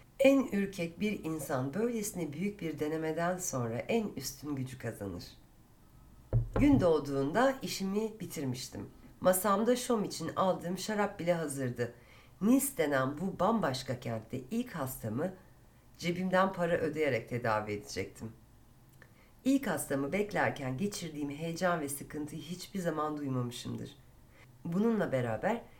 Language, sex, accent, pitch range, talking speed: Turkish, female, native, 130-195 Hz, 110 wpm